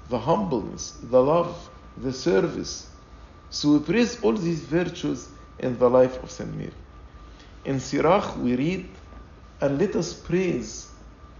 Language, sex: English, male